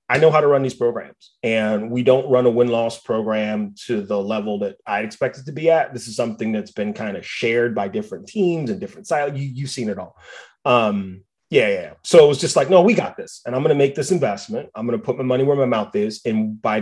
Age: 30-49